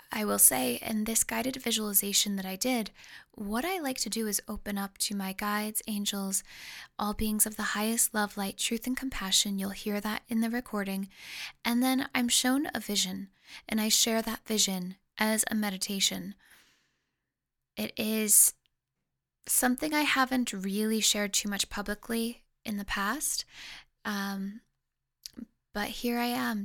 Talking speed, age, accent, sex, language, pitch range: 160 wpm, 10-29, American, female, English, 200-235 Hz